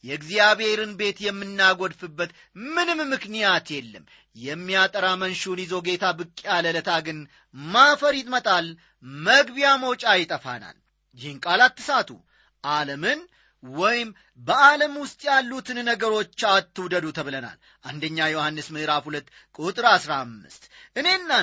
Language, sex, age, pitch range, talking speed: Amharic, male, 30-49, 175-270 Hz, 100 wpm